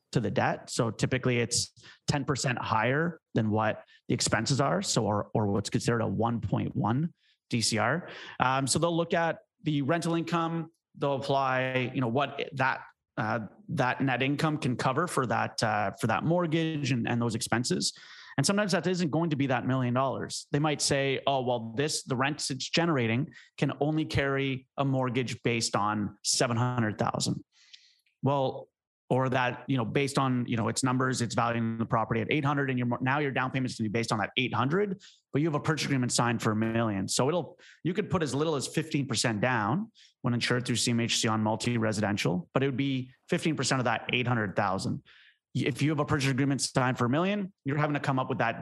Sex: male